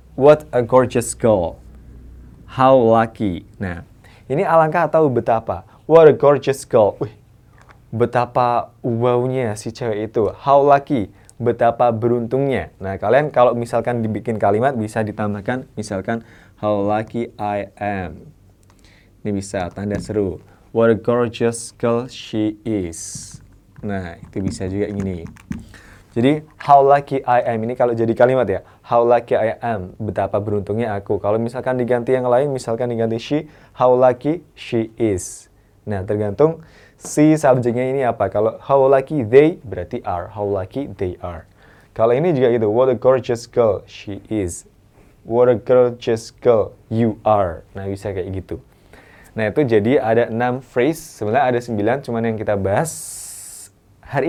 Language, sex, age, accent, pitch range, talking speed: Indonesian, male, 20-39, native, 100-125 Hz, 145 wpm